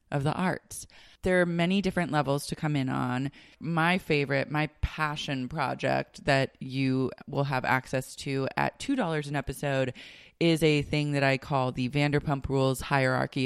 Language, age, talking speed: English, 20-39, 165 wpm